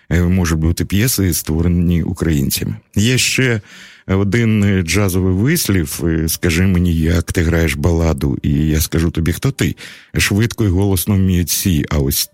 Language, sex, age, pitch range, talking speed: Russian, male, 50-69, 80-95 Hz, 135 wpm